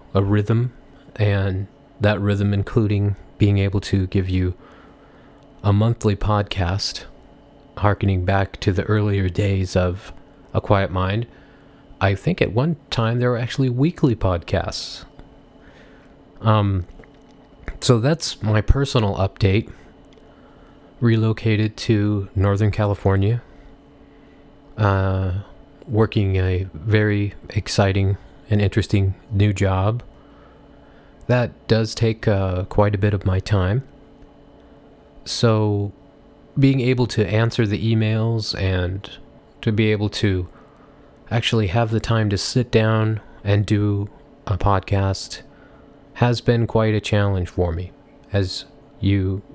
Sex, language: male, English